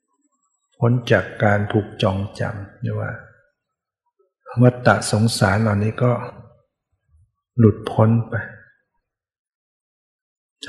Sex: male